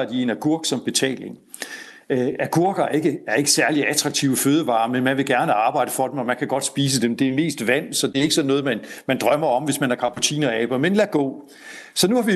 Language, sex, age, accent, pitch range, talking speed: Danish, male, 60-79, native, 140-205 Hz, 260 wpm